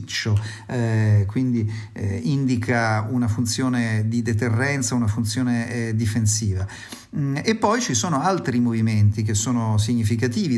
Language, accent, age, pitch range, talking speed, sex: Italian, native, 40-59, 115-140 Hz, 125 wpm, male